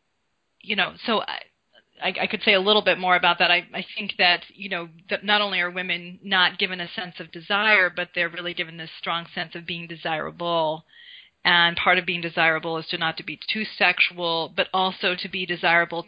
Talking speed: 215 wpm